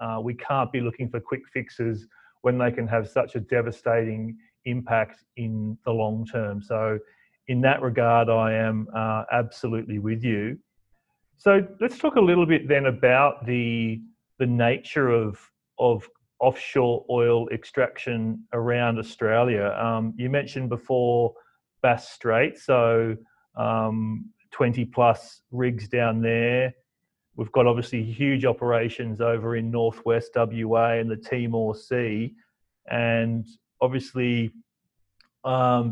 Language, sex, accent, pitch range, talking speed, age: English, male, Australian, 115-125 Hz, 125 wpm, 30-49